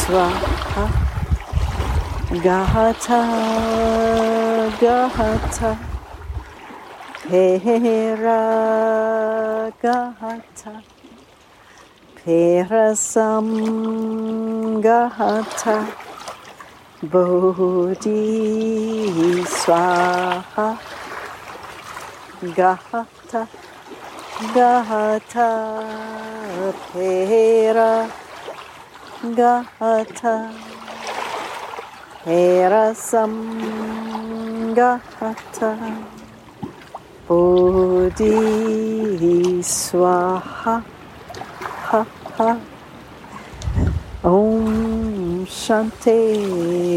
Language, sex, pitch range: English, female, 185-225 Hz